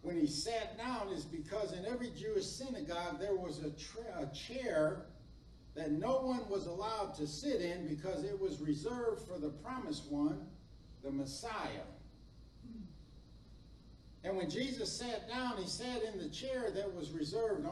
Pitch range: 165-245 Hz